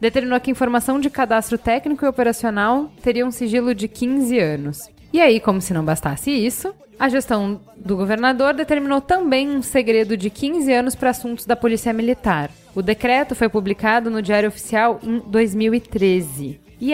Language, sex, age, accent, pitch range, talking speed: Portuguese, female, 10-29, Brazilian, 210-245 Hz, 165 wpm